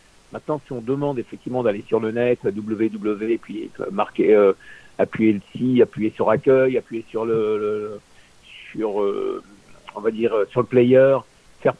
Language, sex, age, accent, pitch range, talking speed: French, male, 60-79, French, 130-165 Hz, 165 wpm